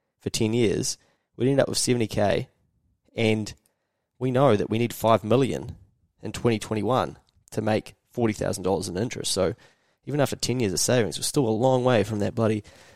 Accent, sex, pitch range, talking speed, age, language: Australian, male, 105-130 Hz, 170 wpm, 20-39, English